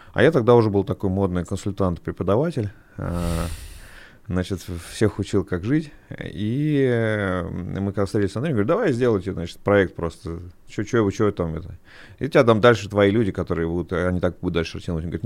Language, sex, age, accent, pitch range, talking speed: Russian, male, 30-49, native, 90-120 Hz, 170 wpm